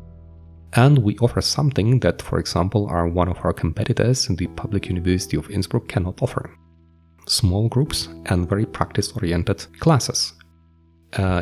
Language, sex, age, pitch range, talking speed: English, male, 30-49, 85-115 Hz, 140 wpm